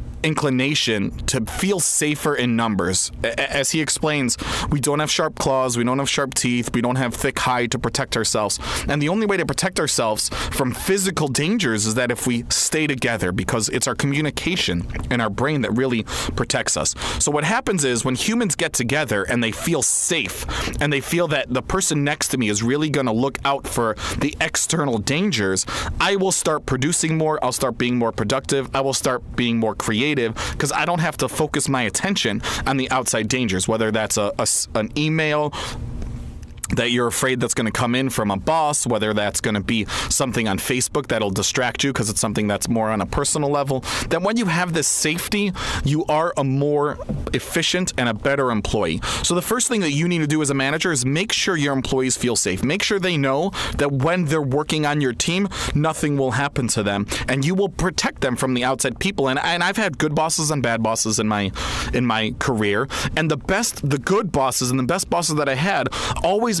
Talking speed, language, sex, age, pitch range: 210 wpm, English, male, 30-49, 115-155 Hz